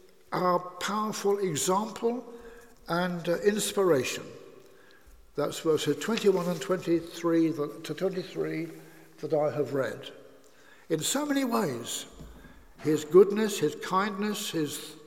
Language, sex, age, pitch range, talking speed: English, male, 60-79, 160-245 Hz, 115 wpm